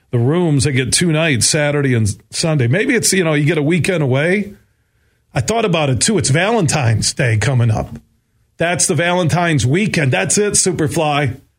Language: English